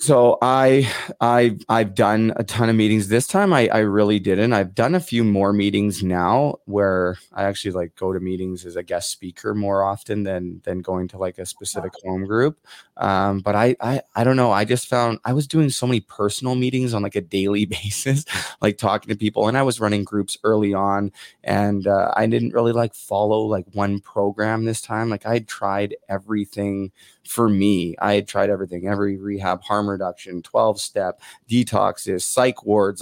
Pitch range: 100-110 Hz